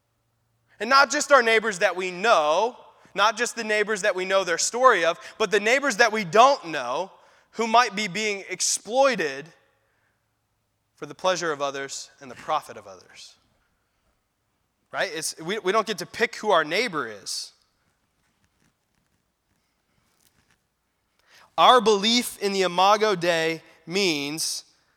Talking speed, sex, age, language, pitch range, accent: 140 wpm, male, 20-39, English, 155-220 Hz, American